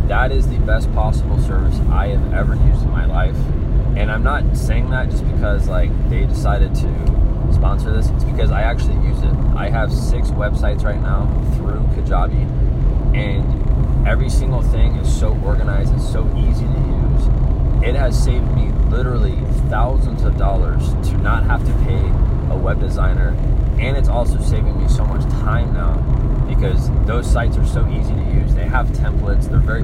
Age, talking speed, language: 20-39, 180 wpm, English